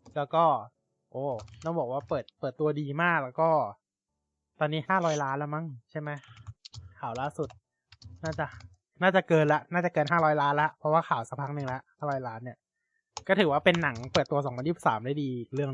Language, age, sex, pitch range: Thai, 20-39, male, 120-165 Hz